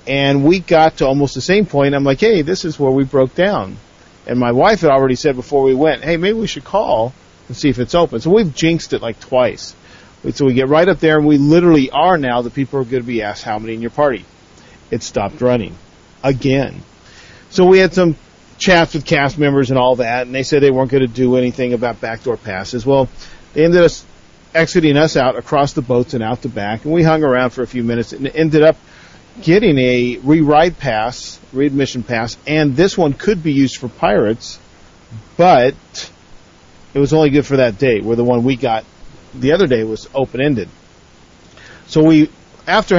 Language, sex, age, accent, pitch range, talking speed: English, male, 40-59, American, 120-155 Hz, 215 wpm